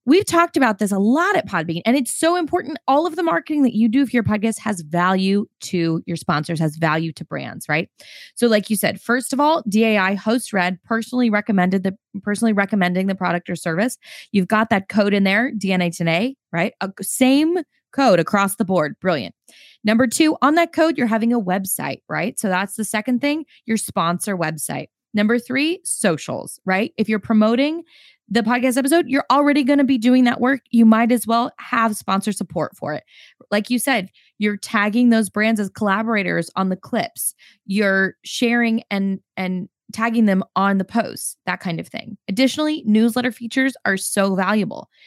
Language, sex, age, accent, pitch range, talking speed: English, female, 20-39, American, 195-260 Hz, 190 wpm